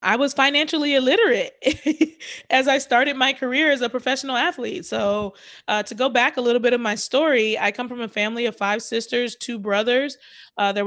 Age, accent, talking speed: 20-39, American, 200 wpm